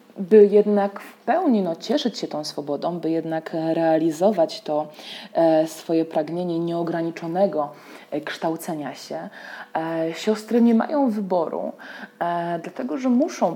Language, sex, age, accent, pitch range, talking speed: Polish, female, 20-39, native, 165-215 Hz, 105 wpm